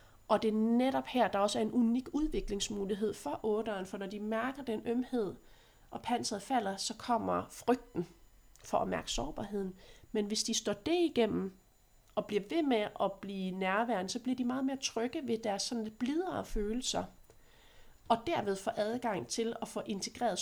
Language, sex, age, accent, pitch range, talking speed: Danish, female, 30-49, native, 195-240 Hz, 180 wpm